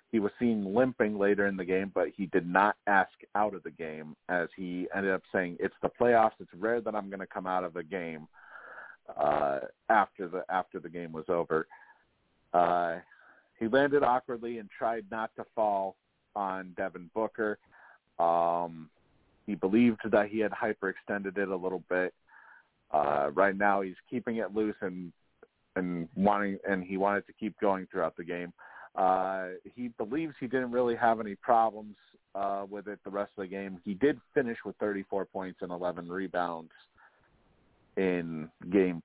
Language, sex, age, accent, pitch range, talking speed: English, male, 40-59, American, 90-110 Hz, 175 wpm